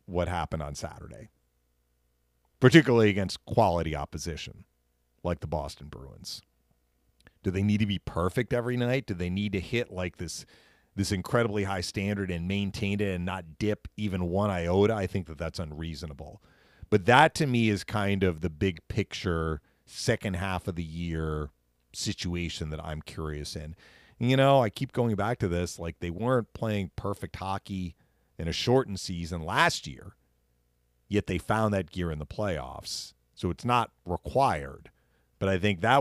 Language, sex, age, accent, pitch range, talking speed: English, male, 40-59, American, 80-105 Hz, 170 wpm